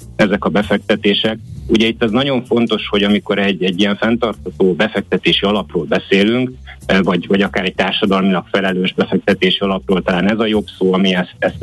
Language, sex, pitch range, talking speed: Hungarian, male, 95-110 Hz, 170 wpm